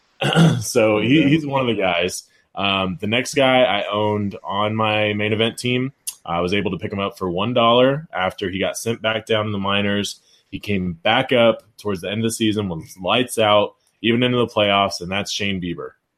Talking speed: 210 wpm